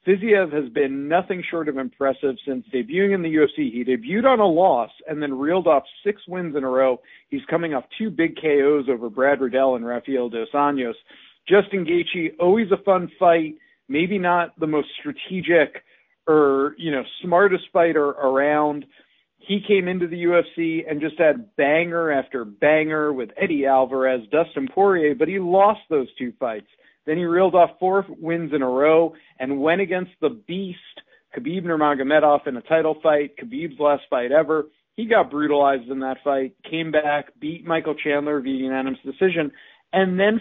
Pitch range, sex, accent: 145-185 Hz, male, American